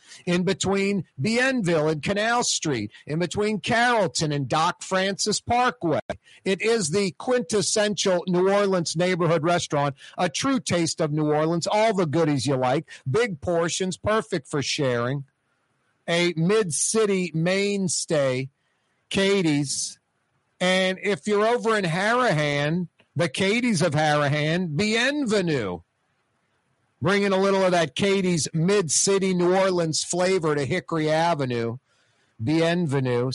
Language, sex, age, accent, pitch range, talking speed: English, male, 50-69, American, 140-185 Hz, 120 wpm